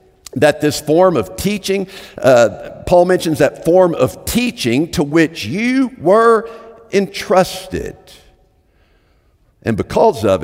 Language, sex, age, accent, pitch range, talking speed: English, male, 50-69, American, 105-170 Hz, 115 wpm